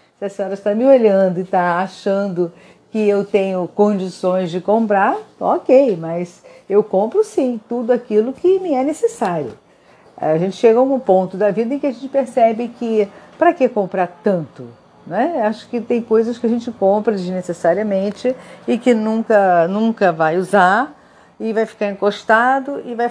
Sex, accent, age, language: female, Brazilian, 50-69, Portuguese